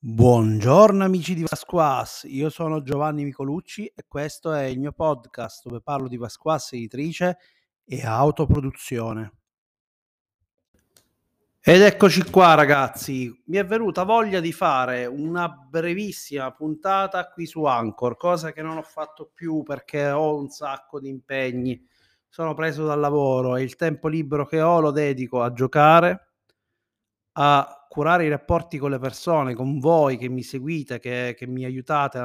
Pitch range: 130-160 Hz